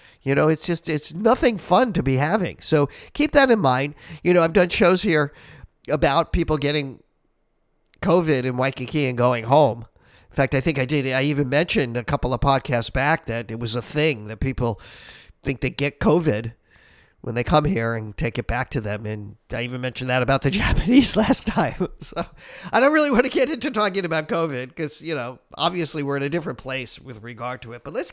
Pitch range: 130-175 Hz